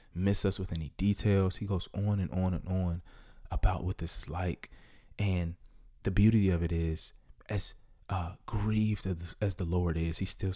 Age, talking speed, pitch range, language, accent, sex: 20-39, 180 wpm, 85-100 Hz, English, American, male